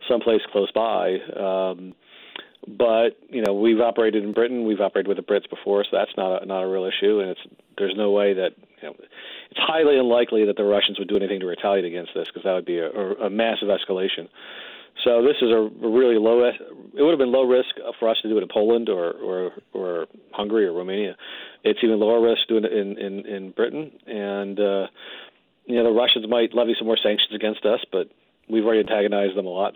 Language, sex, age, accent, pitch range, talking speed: English, male, 40-59, American, 100-115 Hz, 220 wpm